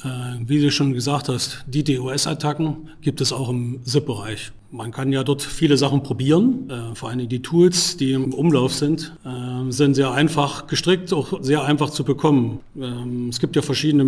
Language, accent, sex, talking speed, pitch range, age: German, German, male, 175 wpm, 130-155 Hz, 40-59